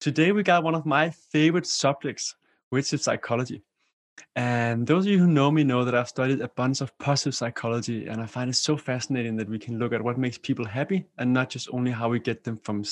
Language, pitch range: English, 120-150 Hz